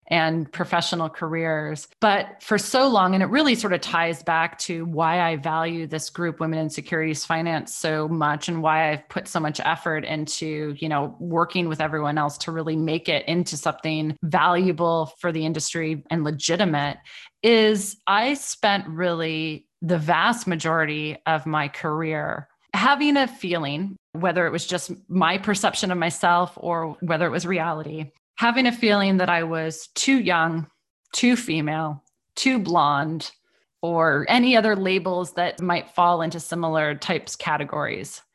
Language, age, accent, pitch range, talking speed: English, 20-39, American, 160-190 Hz, 160 wpm